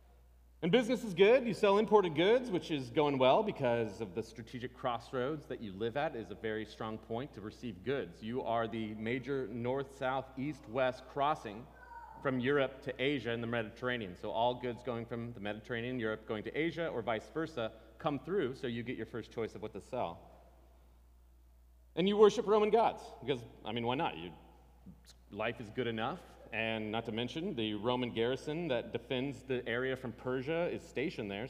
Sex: male